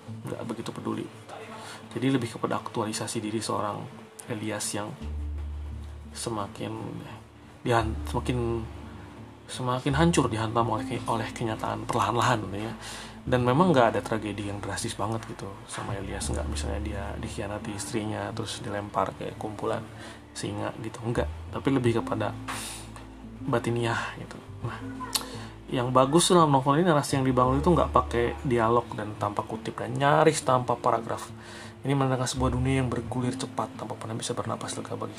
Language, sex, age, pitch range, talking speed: Indonesian, male, 30-49, 110-125 Hz, 145 wpm